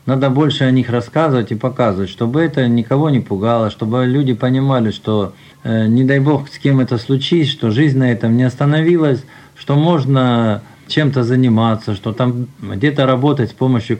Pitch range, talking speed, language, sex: 115-140 Hz, 165 wpm, Russian, male